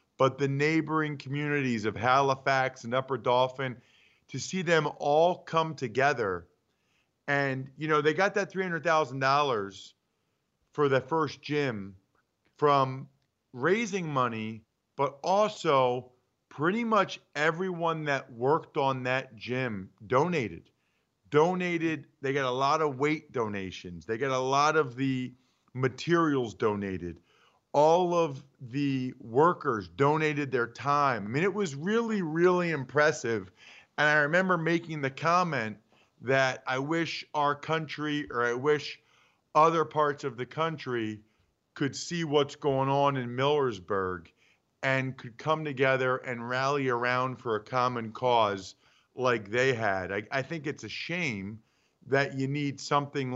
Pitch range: 125-150 Hz